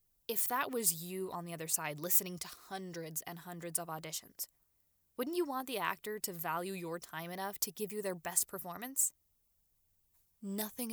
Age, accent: 10-29, American